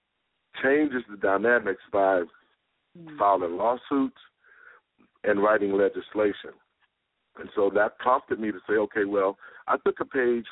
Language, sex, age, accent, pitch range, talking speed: English, male, 50-69, American, 100-130 Hz, 125 wpm